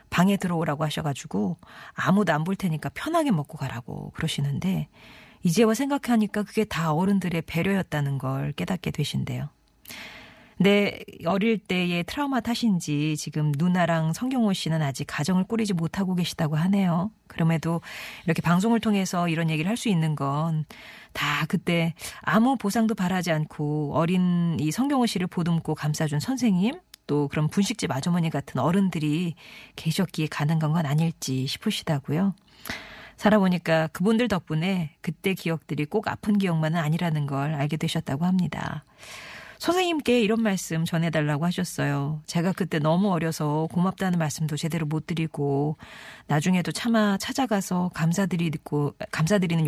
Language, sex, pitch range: Korean, female, 155-195 Hz